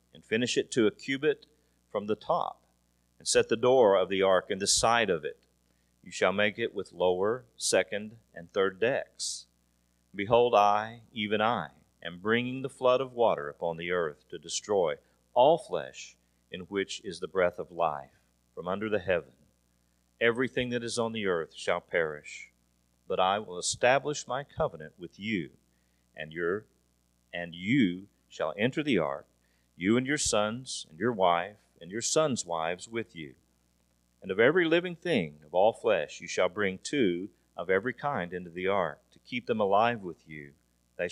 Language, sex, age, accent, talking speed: English, male, 40-59, American, 175 wpm